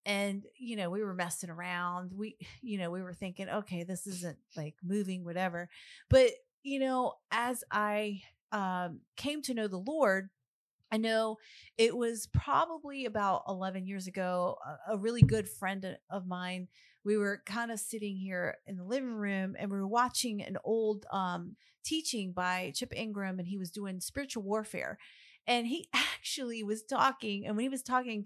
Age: 30-49